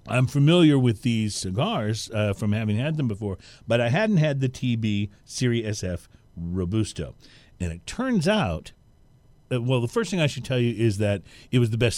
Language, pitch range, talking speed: English, 105-145 Hz, 190 wpm